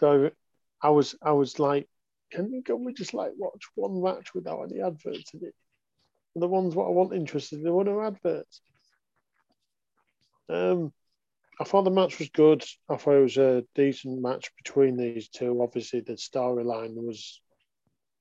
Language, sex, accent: English, male, British